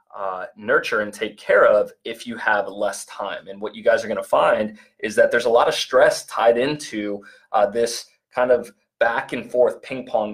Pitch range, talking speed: 105-140 Hz, 210 wpm